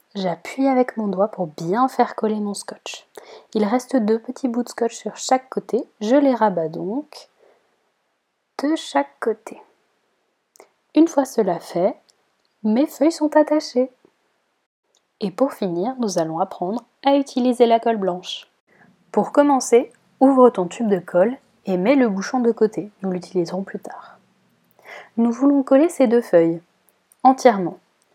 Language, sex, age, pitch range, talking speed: French, female, 20-39, 205-270 Hz, 150 wpm